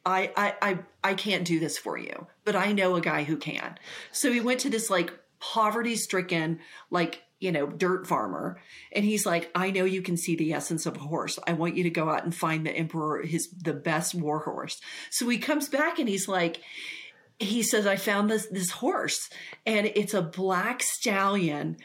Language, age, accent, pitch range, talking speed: English, 40-59, American, 165-210 Hz, 210 wpm